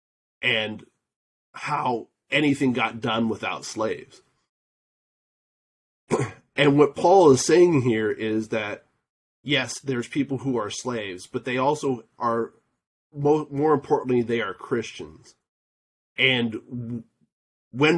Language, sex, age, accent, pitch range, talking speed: English, male, 30-49, American, 110-130 Hz, 105 wpm